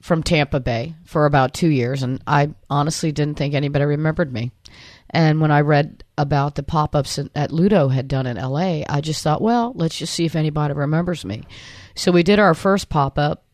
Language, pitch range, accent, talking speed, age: English, 135-170 Hz, American, 200 wpm, 40-59